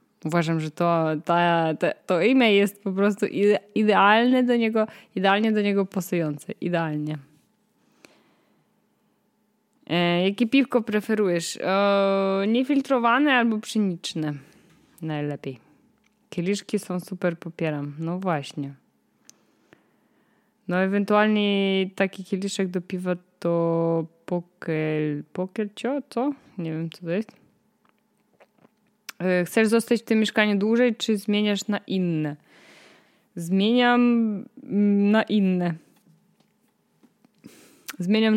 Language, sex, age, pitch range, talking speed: Polish, female, 20-39, 170-220 Hz, 95 wpm